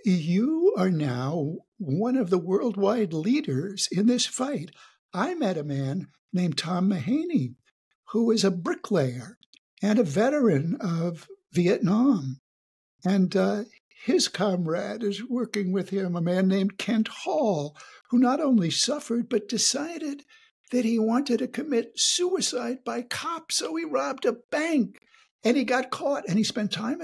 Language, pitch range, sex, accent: English, 155-235 Hz, male, American